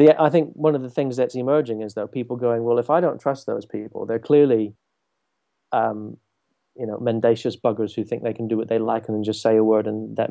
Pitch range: 110-135 Hz